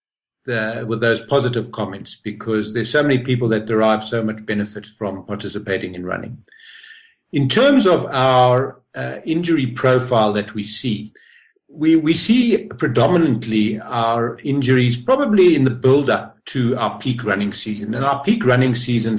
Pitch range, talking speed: 105-130 Hz, 150 wpm